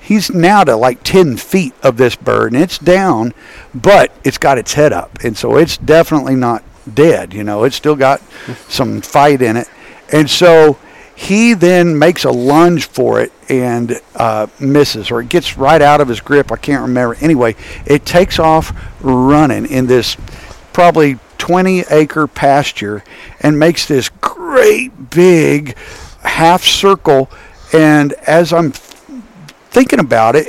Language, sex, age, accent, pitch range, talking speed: English, male, 50-69, American, 130-175 Hz, 155 wpm